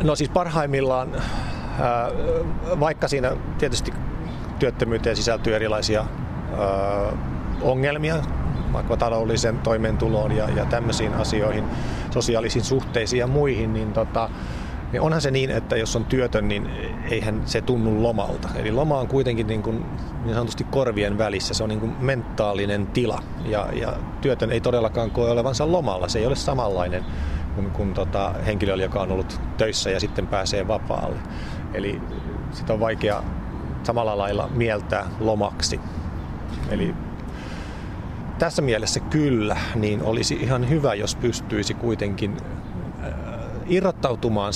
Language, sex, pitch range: Finnish, male, 100-125 Hz